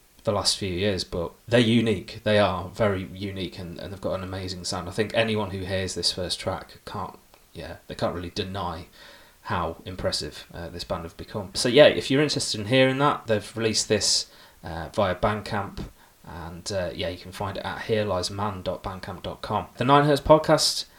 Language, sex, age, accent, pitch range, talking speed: English, male, 20-39, British, 95-115 Hz, 190 wpm